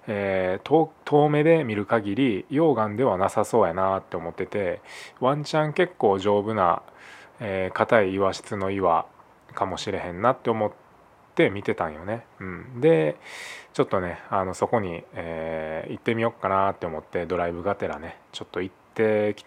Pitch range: 95-125 Hz